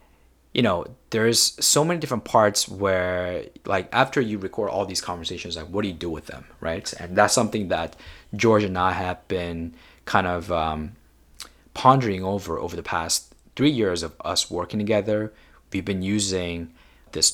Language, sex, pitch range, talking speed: English, male, 80-105 Hz, 175 wpm